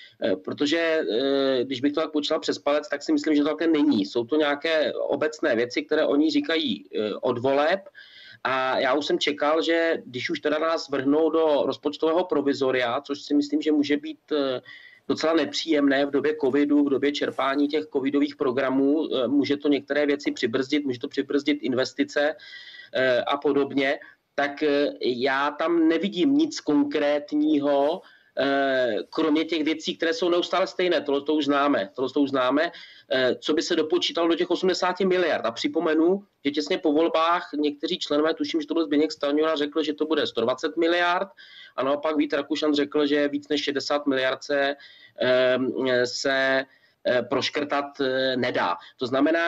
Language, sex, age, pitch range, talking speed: Czech, male, 30-49, 140-165 Hz, 160 wpm